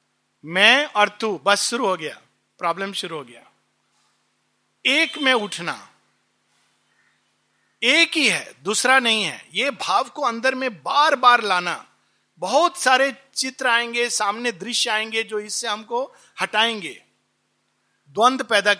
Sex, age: male, 50-69